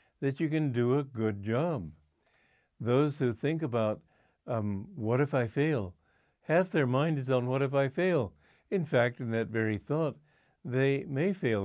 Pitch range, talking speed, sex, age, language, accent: 110-150 Hz, 175 wpm, male, 60-79, English, American